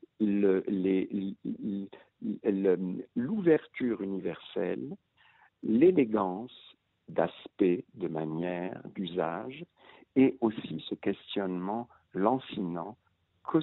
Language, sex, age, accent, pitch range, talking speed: French, male, 60-79, French, 90-120 Hz, 75 wpm